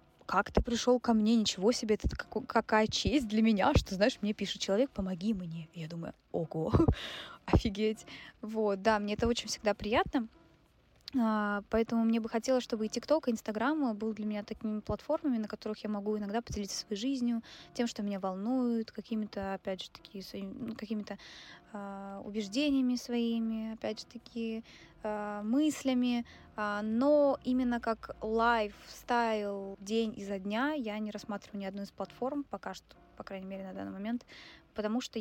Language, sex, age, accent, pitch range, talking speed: Russian, female, 20-39, native, 210-250 Hz, 155 wpm